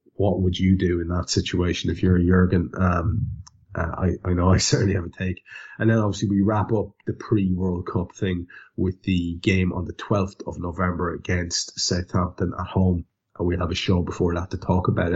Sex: male